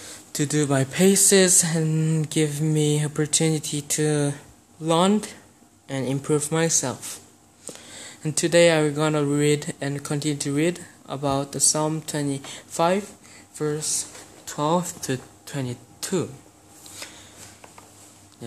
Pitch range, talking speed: 115-150 Hz, 85 wpm